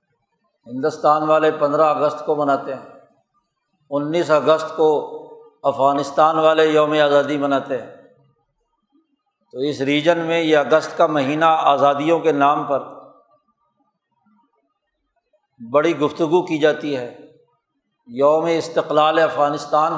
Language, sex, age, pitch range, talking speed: Urdu, male, 60-79, 150-210 Hz, 110 wpm